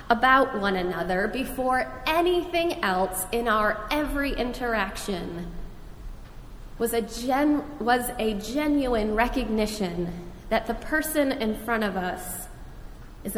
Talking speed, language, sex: 110 wpm, English, female